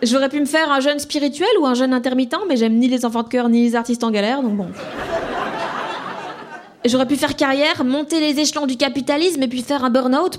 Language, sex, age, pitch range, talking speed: French, female, 20-39, 245-300 Hz, 225 wpm